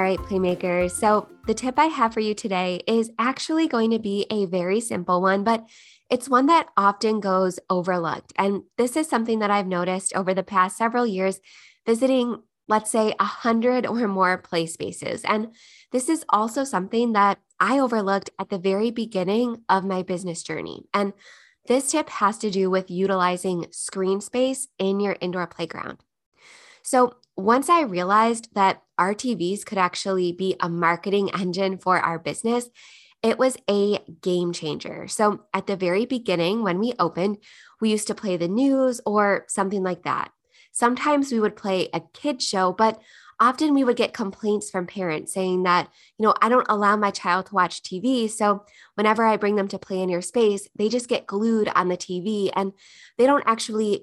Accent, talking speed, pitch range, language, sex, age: American, 185 wpm, 185-230 Hz, English, female, 20-39